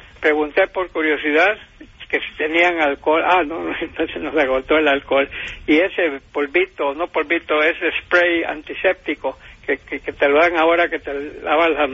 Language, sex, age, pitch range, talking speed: English, male, 60-79, 150-180 Hz, 170 wpm